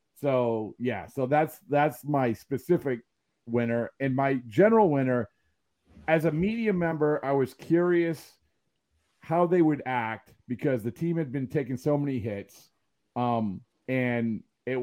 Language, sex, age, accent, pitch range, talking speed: English, male, 40-59, American, 115-150 Hz, 140 wpm